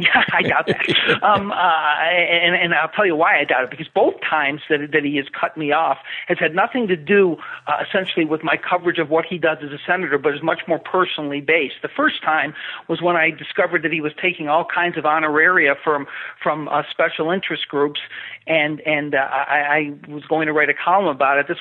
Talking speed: 230 wpm